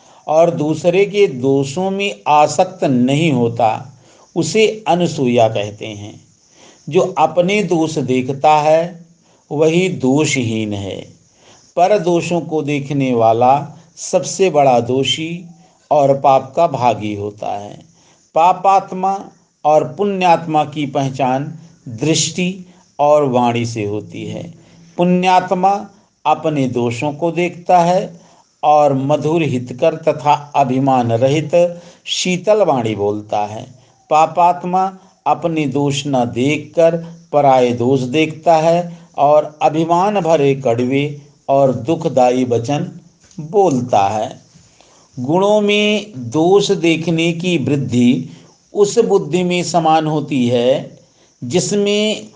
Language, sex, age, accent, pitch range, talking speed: Hindi, male, 50-69, native, 135-175 Hz, 105 wpm